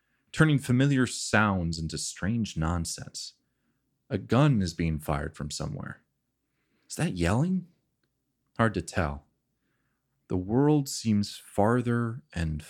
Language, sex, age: English, male, 30-49